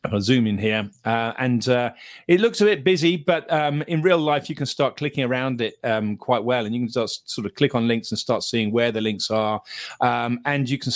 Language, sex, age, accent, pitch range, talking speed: English, male, 40-59, British, 110-135 Hz, 250 wpm